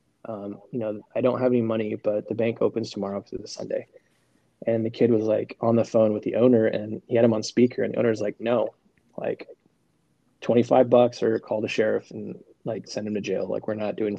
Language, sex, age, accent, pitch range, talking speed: English, male, 20-39, American, 110-125 Hz, 235 wpm